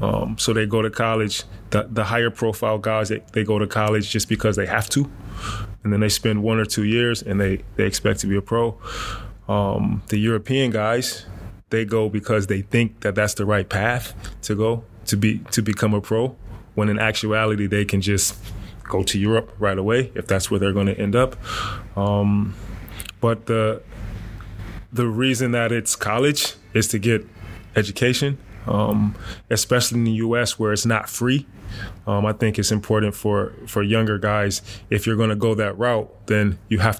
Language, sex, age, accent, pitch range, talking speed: Finnish, male, 20-39, American, 100-110 Hz, 190 wpm